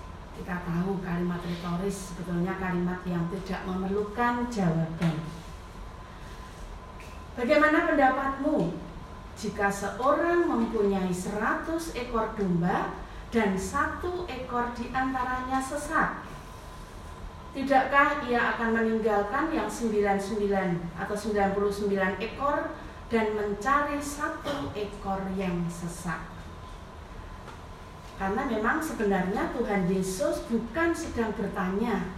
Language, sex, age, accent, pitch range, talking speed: Indonesian, female, 40-59, native, 180-245 Hz, 90 wpm